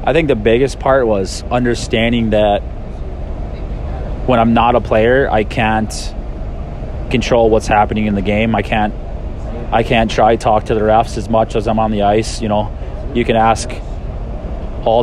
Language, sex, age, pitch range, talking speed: English, male, 20-39, 105-115 Hz, 170 wpm